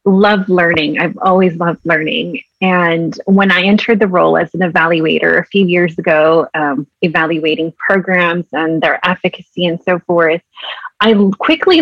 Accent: American